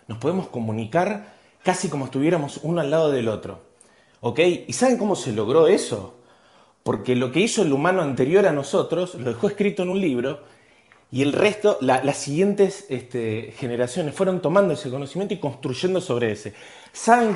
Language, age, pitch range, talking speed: Spanish, 30-49, 115-180 Hz, 175 wpm